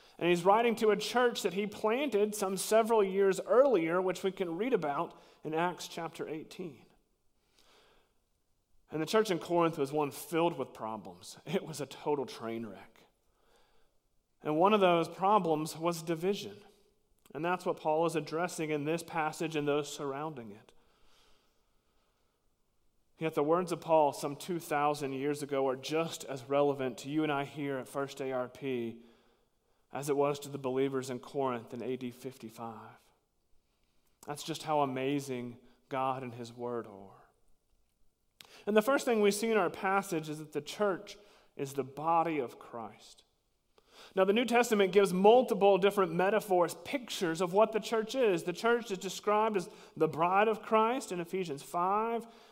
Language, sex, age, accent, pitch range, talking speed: English, male, 30-49, American, 140-200 Hz, 165 wpm